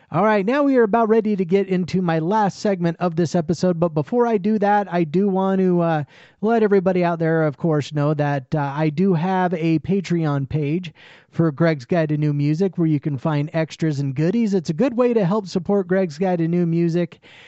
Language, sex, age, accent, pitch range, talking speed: English, male, 30-49, American, 155-210 Hz, 225 wpm